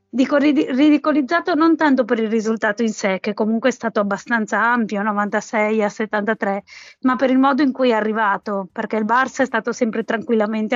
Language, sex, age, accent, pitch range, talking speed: Italian, female, 20-39, native, 225-260 Hz, 185 wpm